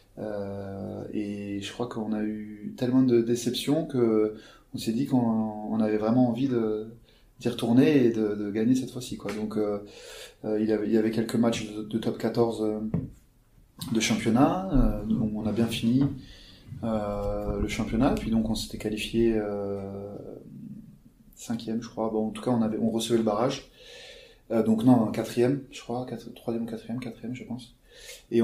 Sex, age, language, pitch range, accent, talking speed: male, 20-39, French, 105-120 Hz, French, 180 wpm